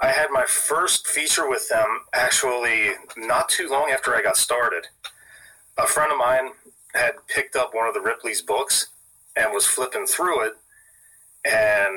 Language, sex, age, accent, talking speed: English, male, 30-49, American, 165 wpm